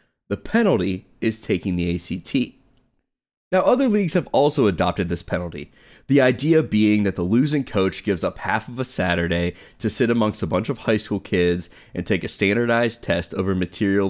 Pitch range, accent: 90-130 Hz, American